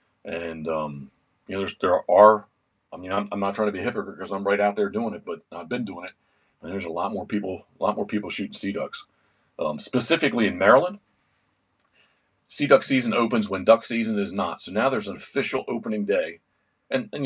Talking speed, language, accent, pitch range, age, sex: 220 wpm, English, American, 95-115 Hz, 40-59, male